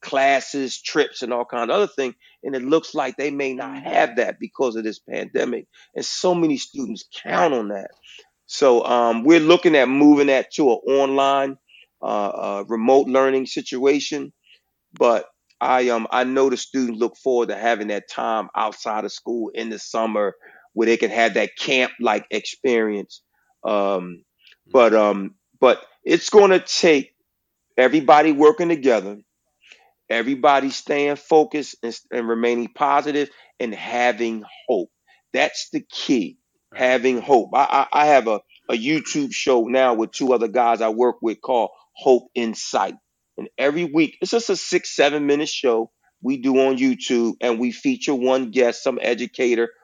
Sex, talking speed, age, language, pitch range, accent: male, 160 wpm, 40-59, English, 115-145 Hz, American